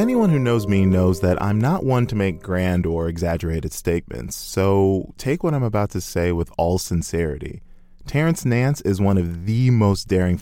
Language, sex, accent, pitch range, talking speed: English, male, American, 85-105 Hz, 190 wpm